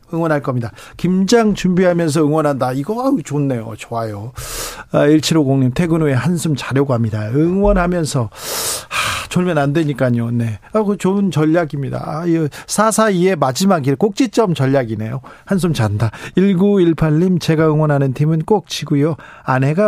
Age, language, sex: 40-59, Korean, male